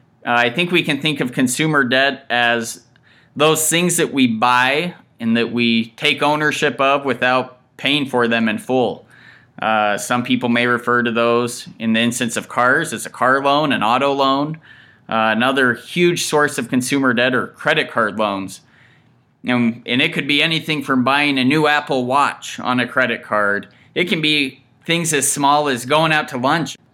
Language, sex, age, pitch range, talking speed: English, male, 20-39, 120-150 Hz, 185 wpm